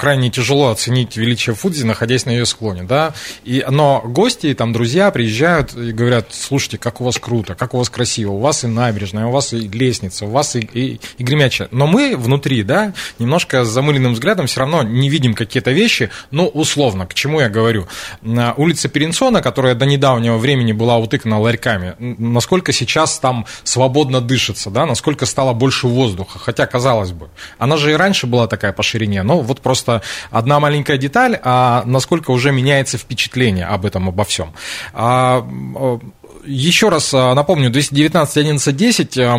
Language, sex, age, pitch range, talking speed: Russian, male, 20-39, 115-145 Hz, 170 wpm